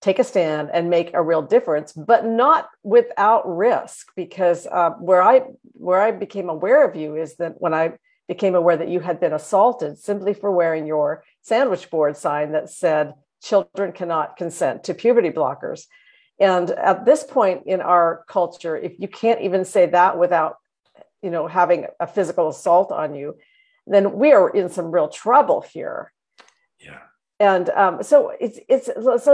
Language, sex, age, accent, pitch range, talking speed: English, female, 50-69, American, 170-215 Hz, 170 wpm